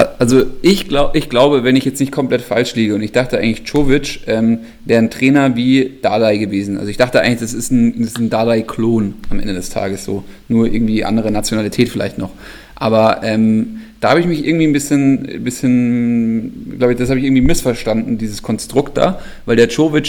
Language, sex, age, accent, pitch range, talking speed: German, male, 30-49, German, 115-135 Hz, 205 wpm